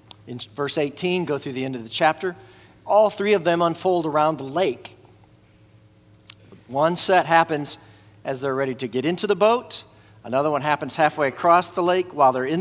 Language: English